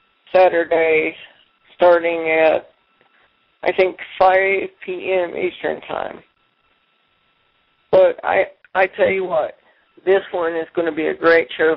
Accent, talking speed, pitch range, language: American, 120 wpm, 165-195 Hz, English